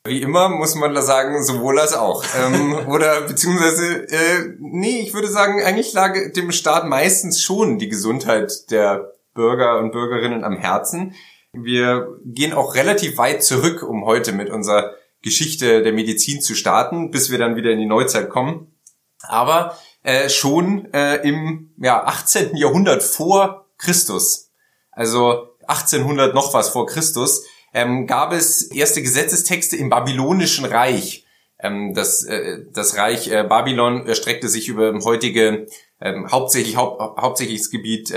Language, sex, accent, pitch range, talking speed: German, male, German, 115-165 Hz, 140 wpm